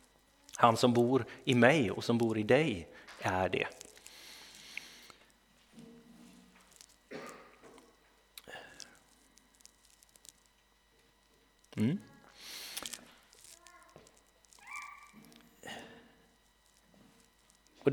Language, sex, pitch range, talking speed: Swedish, male, 115-160 Hz, 45 wpm